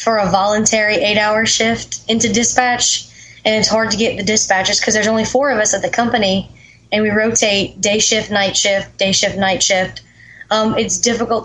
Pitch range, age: 195-225 Hz, 20-39